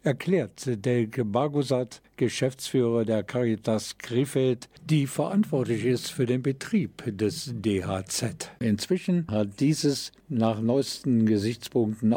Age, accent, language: 50-69, German, German